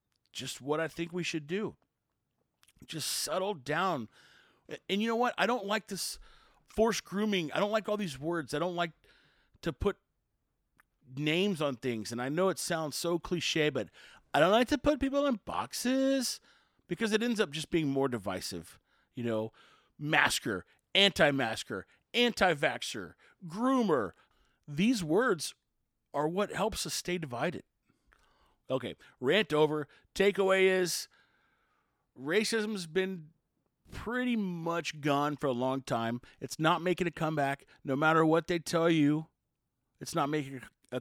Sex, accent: male, American